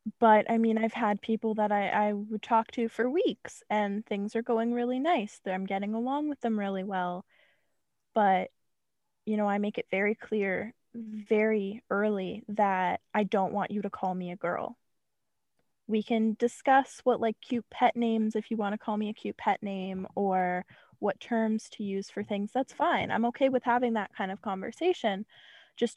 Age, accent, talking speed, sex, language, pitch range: 10-29, American, 195 wpm, female, English, 200-235 Hz